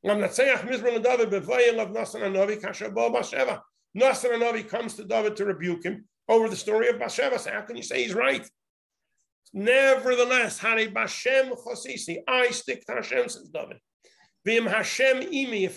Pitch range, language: 205-245 Hz, English